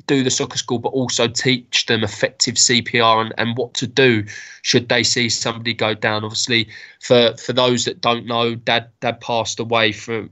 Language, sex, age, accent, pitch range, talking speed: English, male, 20-39, British, 115-125 Hz, 190 wpm